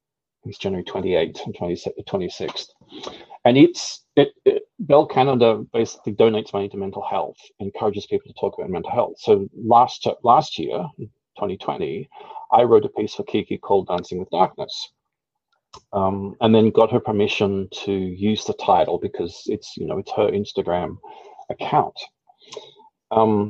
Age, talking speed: 40-59, 155 wpm